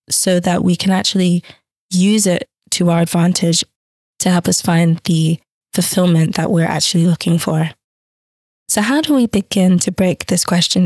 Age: 20-39